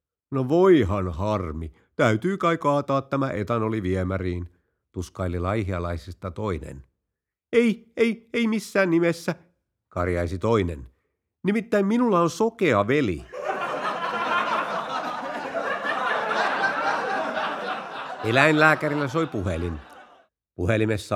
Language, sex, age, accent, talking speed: Finnish, male, 50-69, native, 80 wpm